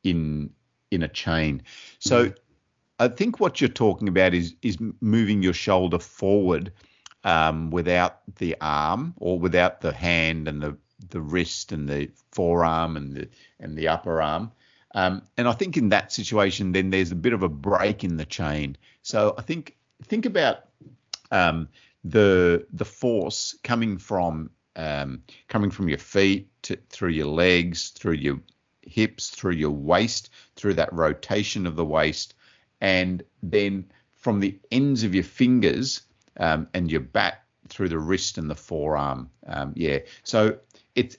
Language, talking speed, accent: English, 160 wpm, Australian